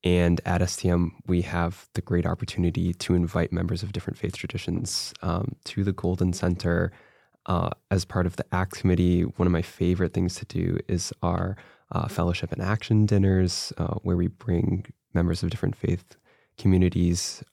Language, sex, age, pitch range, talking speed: English, male, 20-39, 85-100 Hz, 170 wpm